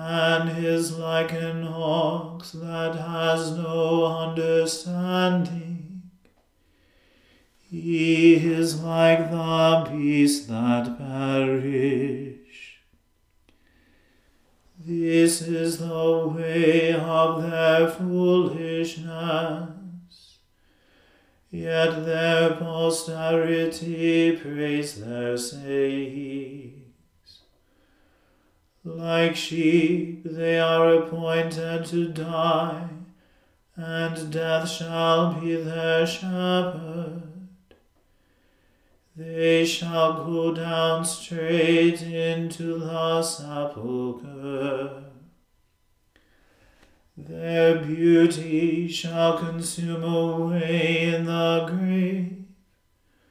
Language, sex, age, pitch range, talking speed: English, male, 40-59, 160-165 Hz, 65 wpm